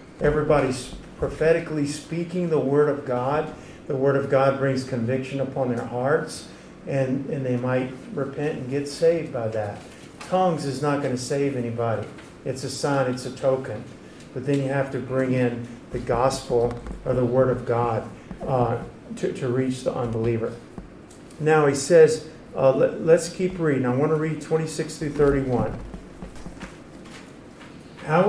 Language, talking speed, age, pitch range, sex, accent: English, 155 wpm, 50-69, 125-160 Hz, male, American